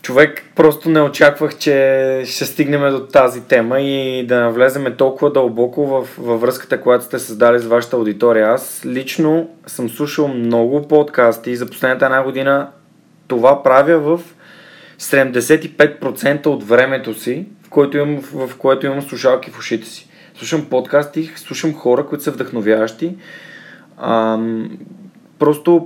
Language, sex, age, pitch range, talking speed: Bulgarian, male, 20-39, 130-160 Hz, 135 wpm